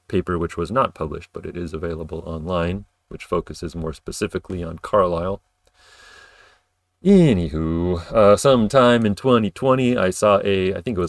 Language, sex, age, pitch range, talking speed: English, male, 30-49, 90-100 Hz, 150 wpm